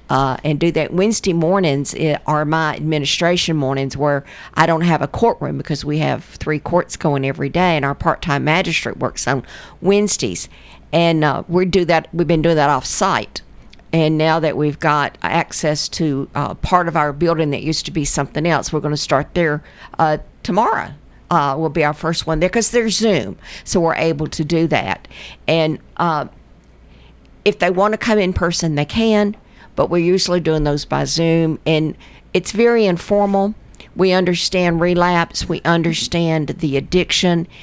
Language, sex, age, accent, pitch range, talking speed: English, female, 50-69, American, 150-180 Hz, 180 wpm